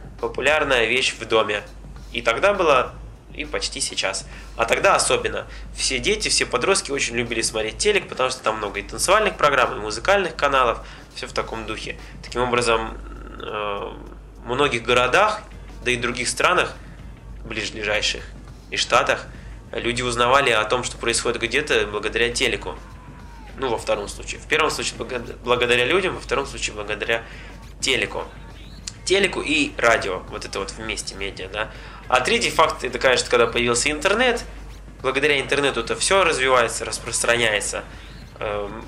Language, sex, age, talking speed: Russian, male, 20-39, 145 wpm